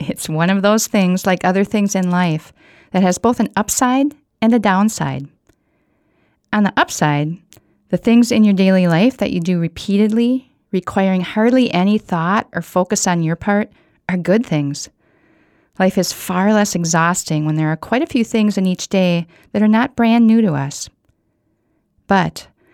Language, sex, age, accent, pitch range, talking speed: English, female, 40-59, American, 170-220 Hz, 175 wpm